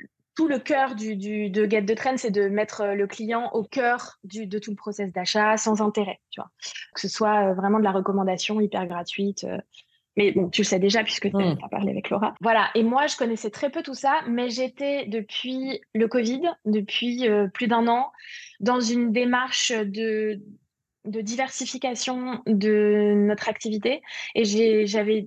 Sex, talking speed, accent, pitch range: female, 185 wpm, French, 210-250 Hz